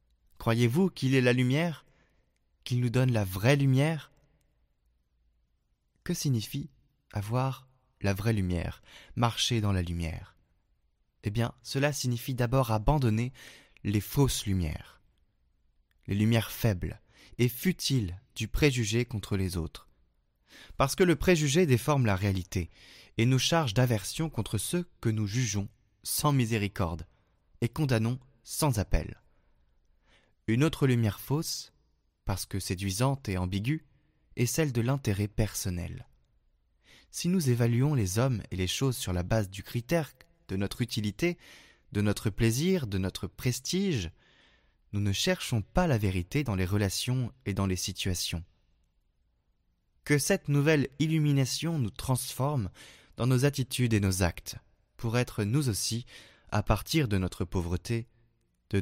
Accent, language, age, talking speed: French, French, 20-39, 135 wpm